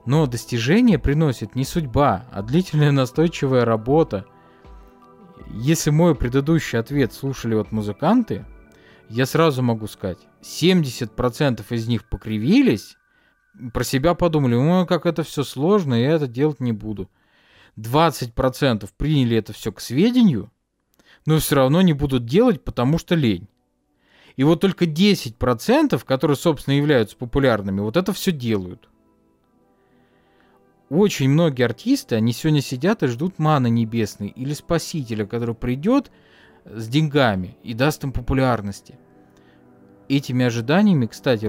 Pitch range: 115-155 Hz